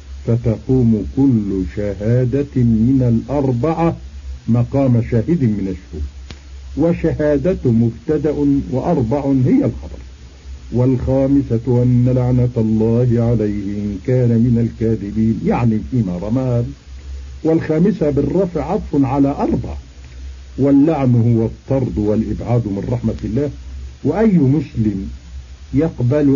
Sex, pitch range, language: male, 95-135 Hz, Arabic